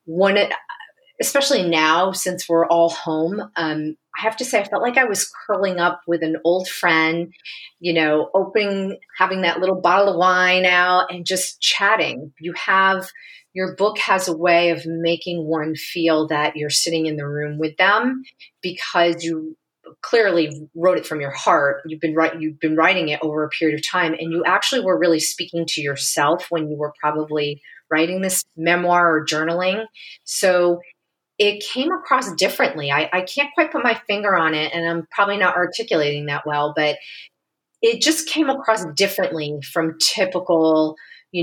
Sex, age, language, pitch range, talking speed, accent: female, 30-49, English, 155-195 Hz, 175 wpm, American